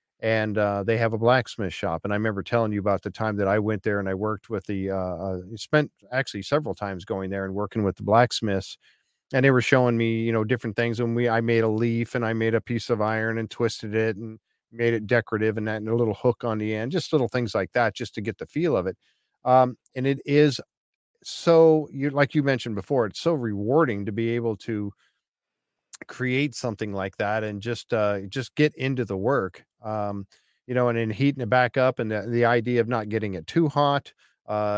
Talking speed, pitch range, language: 235 wpm, 105-125 Hz, English